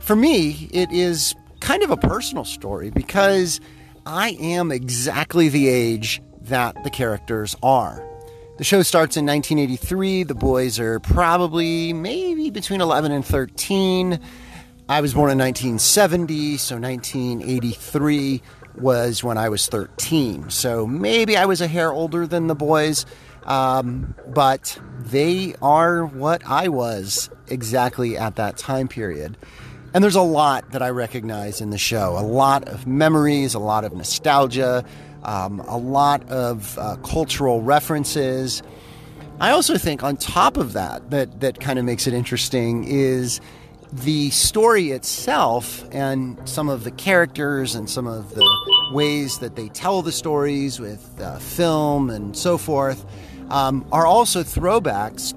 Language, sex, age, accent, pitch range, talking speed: English, male, 40-59, American, 120-160 Hz, 145 wpm